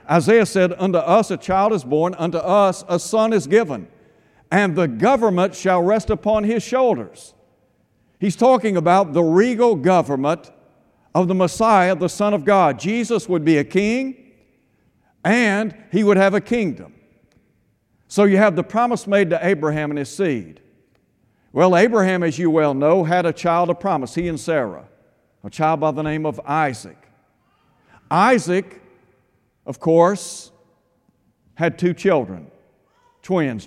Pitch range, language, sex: 155-205 Hz, English, male